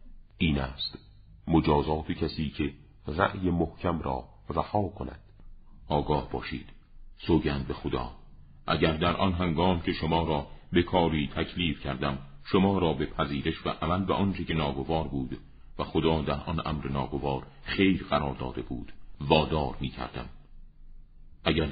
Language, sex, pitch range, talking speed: Persian, male, 70-85 Hz, 140 wpm